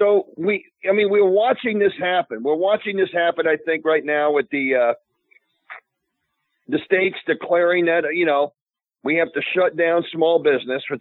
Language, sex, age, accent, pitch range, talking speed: English, male, 50-69, American, 150-205 Hz, 180 wpm